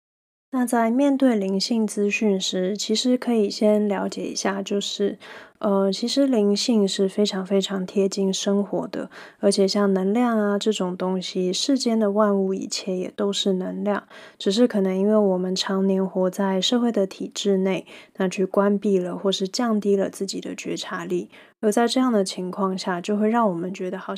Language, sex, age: Chinese, female, 20-39